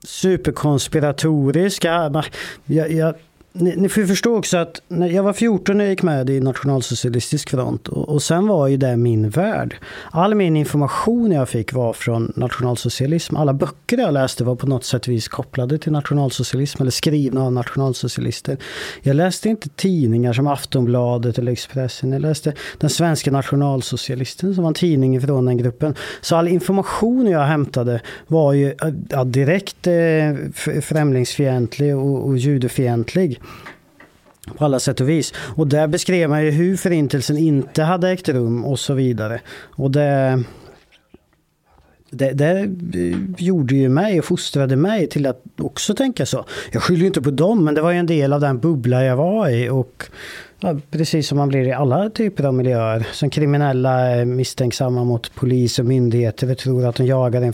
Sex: male